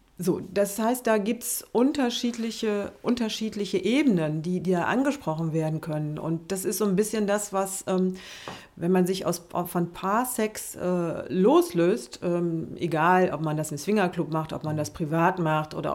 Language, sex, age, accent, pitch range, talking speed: German, female, 40-59, German, 170-200 Hz, 175 wpm